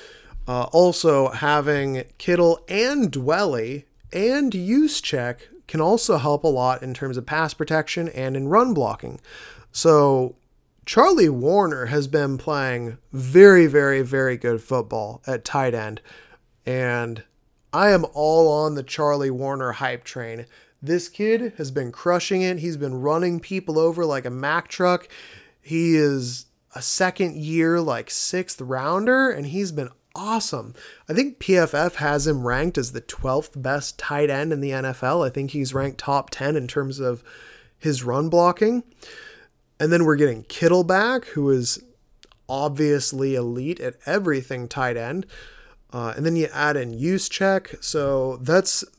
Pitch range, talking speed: 130-175 Hz, 150 wpm